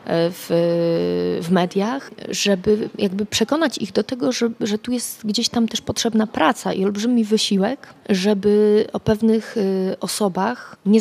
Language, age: Polish, 30-49